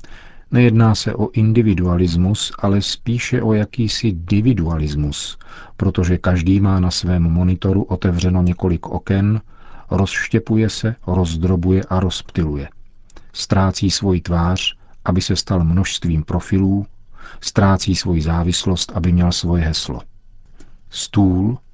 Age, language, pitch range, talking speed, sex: 40-59, Czech, 90-110 Hz, 110 wpm, male